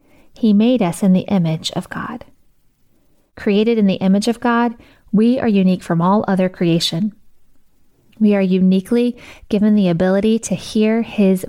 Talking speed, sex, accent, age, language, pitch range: 155 wpm, female, American, 20-39, English, 185-220 Hz